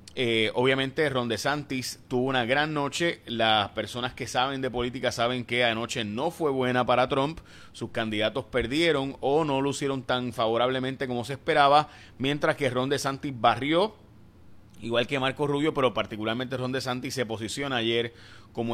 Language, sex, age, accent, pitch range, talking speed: Spanish, male, 30-49, Venezuelan, 110-135 Hz, 160 wpm